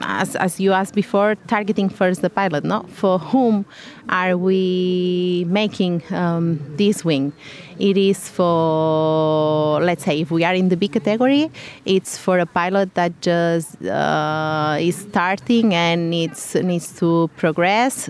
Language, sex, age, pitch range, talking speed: English, female, 30-49, 155-185 Hz, 145 wpm